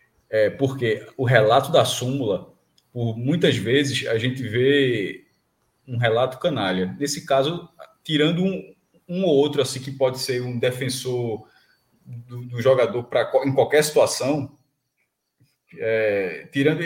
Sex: male